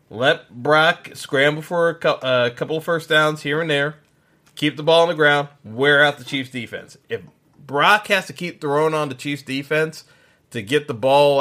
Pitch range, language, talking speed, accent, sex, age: 135-165 Hz, English, 195 wpm, American, male, 30-49